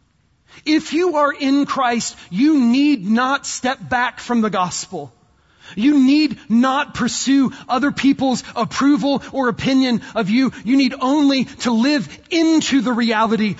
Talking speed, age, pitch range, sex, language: 140 wpm, 30-49, 145-240 Hz, male, English